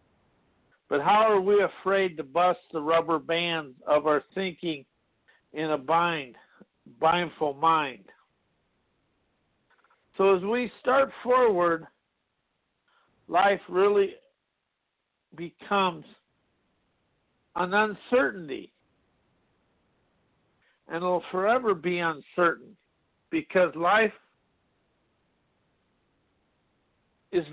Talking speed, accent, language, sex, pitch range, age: 80 wpm, American, English, male, 160-195 Hz, 60-79